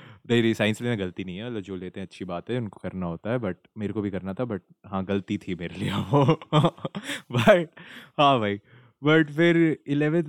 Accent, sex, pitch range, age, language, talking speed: native, male, 105-150 Hz, 20-39, Hindi, 210 wpm